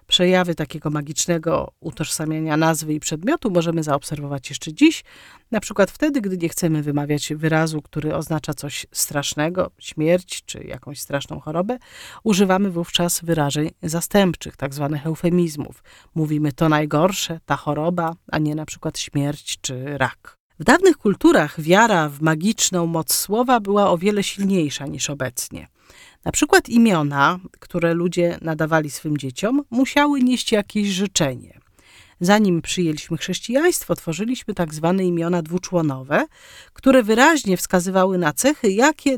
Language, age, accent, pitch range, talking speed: Polish, 40-59, native, 155-205 Hz, 135 wpm